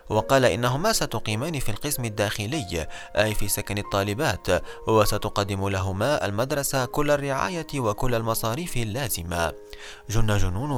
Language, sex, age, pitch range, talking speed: Arabic, male, 30-49, 100-130 Hz, 110 wpm